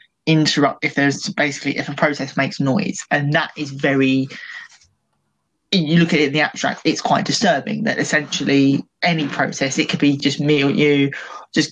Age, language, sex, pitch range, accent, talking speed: 20-39, English, male, 140-160 Hz, British, 180 wpm